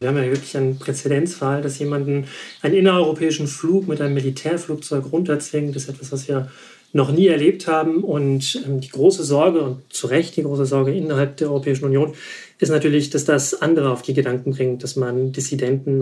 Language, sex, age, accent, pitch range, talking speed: German, male, 40-59, German, 135-165 Hz, 185 wpm